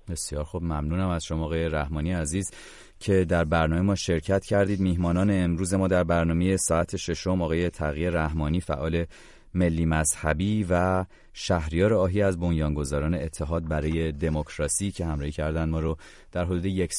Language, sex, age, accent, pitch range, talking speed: English, male, 30-49, Canadian, 80-90 Hz, 150 wpm